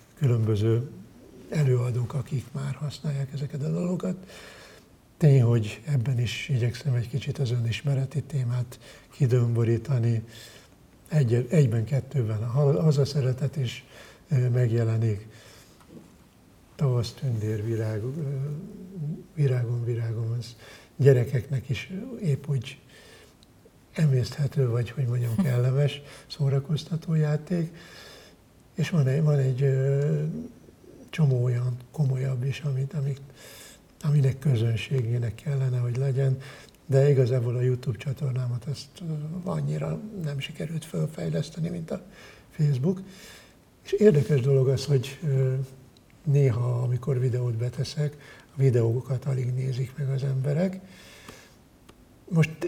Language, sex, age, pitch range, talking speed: Hungarian, male, 60-79, 120-145 Hz, 100 wpm